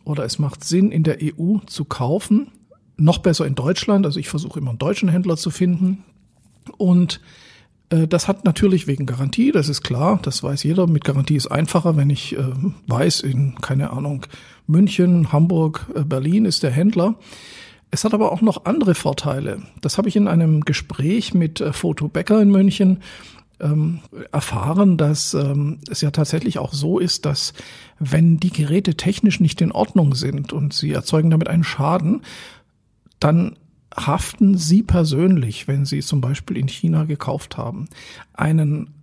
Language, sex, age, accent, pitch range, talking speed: German, male, 50-69, German, 145-185 Hz, 165 wpm